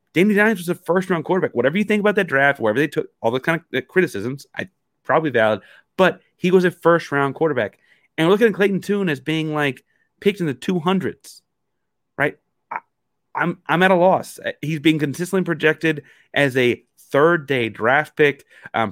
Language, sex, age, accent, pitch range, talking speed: English, male, 30-49, American, 115-165 Hz, 200 wpm